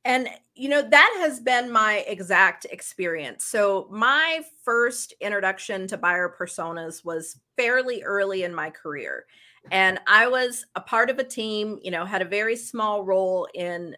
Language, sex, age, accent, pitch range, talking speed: English, female, 40-59, American, 185-230 Hz, 165 wpm